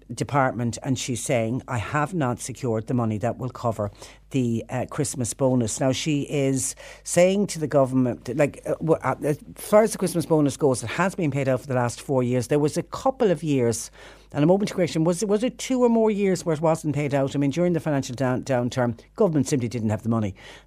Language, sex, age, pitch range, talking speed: English, female, 60-79, 120-145 Hz, 230 wpm